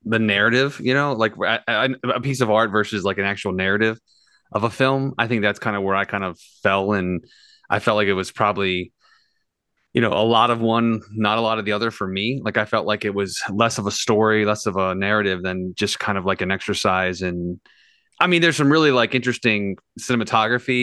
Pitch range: 100-120 Hz